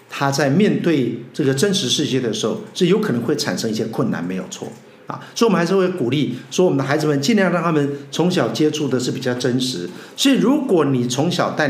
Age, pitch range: 50-69, 135-215 Hz